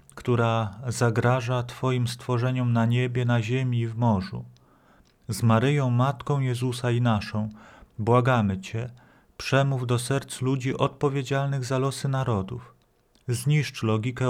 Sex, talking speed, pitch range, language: male, 120 wpm, 110-130 Hz, Polish